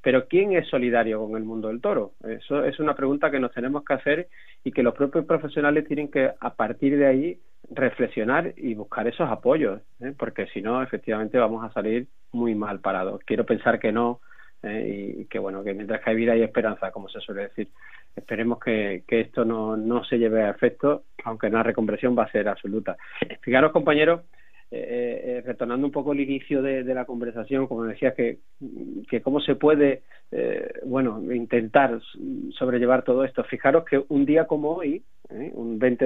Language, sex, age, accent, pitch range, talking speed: Spanish, male, 40-59, Spanish, 115-145 Hz, 195 wpm